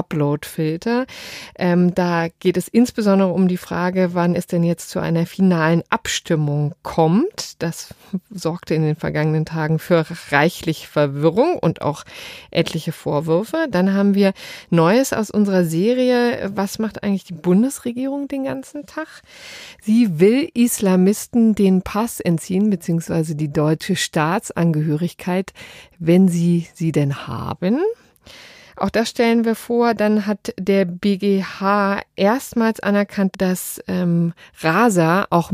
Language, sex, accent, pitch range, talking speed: German, female, German, 165-205 Hz, 125 wpm